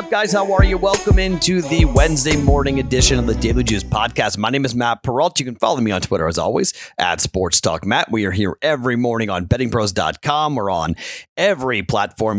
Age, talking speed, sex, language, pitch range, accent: 30-49, 210 wpm, male, English, 105-145 Hz, American